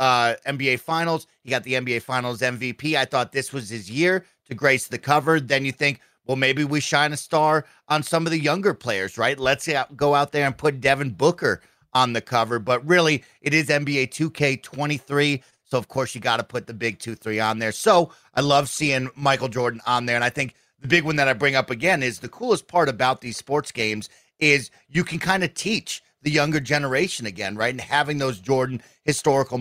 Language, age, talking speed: English, 30-49, 215 wpm